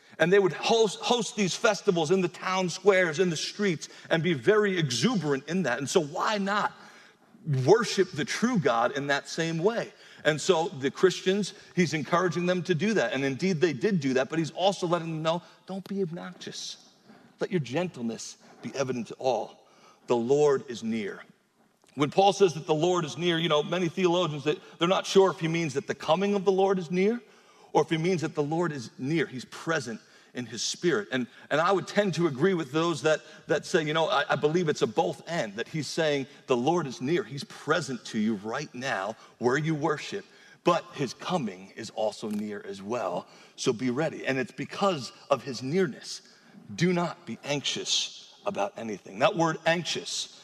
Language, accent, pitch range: English, American, 155-200 Hz